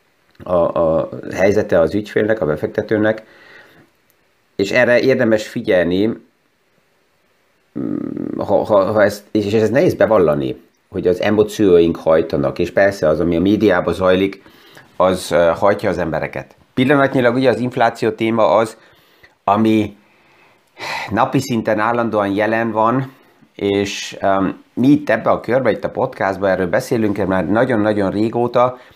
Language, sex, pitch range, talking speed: Hungarian, male, 95-115 Hz, 125 wpm